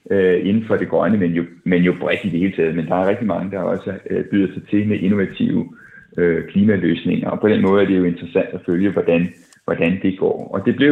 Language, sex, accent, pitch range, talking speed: Danish, male, native, 95-115 Hz, 235 wpm